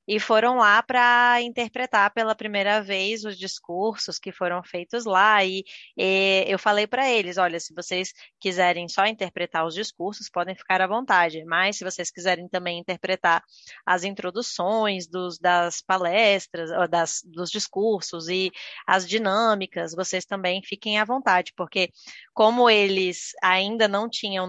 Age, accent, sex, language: 20-39, Brazilian, female, Portuguese